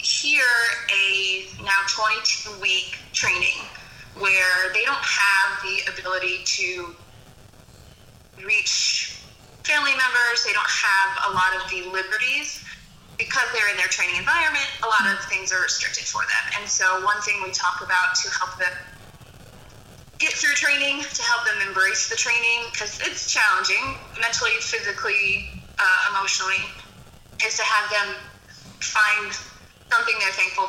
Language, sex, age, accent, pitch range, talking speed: English, female, 20-39, American, 190-310 Hz, 140 wpm